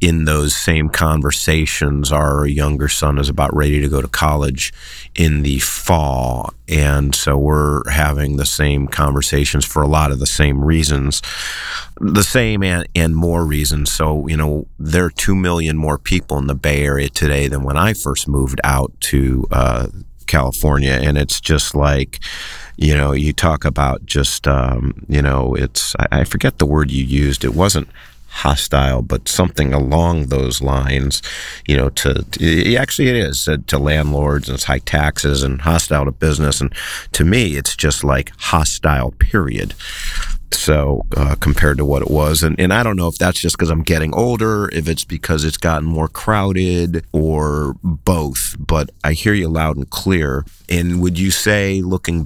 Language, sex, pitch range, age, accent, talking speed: English, male, 70-85 Hz, 40-59, American, 180 wpm